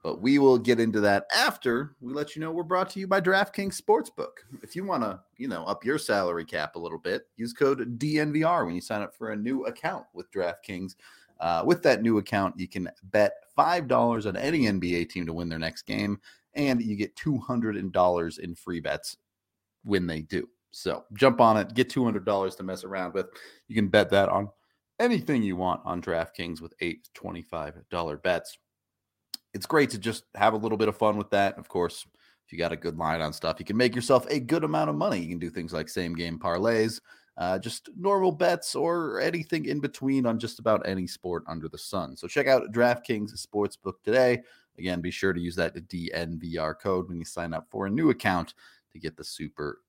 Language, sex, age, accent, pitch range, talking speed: English, male, 30-49, American, 90-125 Hz, 210 wpm